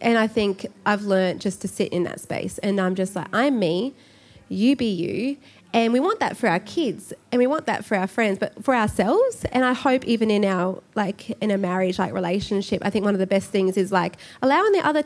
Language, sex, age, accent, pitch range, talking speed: English, female, 20-39, Australian, 185-245 Hz, 245 wpm